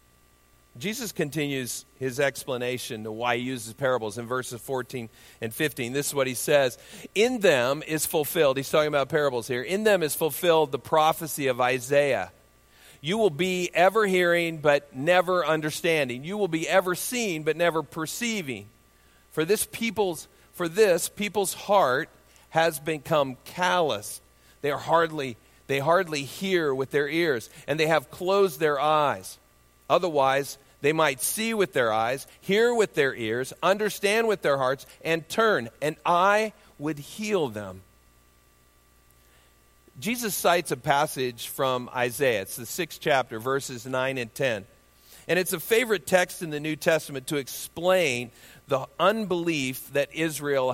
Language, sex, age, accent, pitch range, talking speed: English, male, 40-59, American, 130-175 Hz, 150 wpm